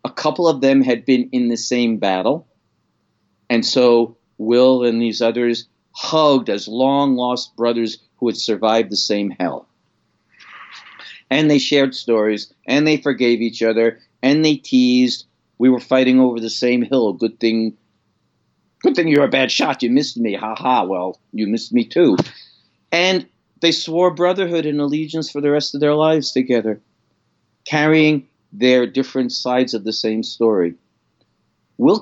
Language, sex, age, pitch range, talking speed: English, male, 50-69, 115-145 Hz, 155 wpm